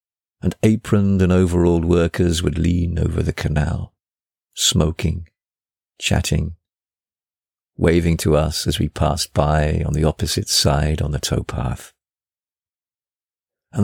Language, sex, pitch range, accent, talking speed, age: English, male, 80-95 Hz, British, 115 wpm, 50-69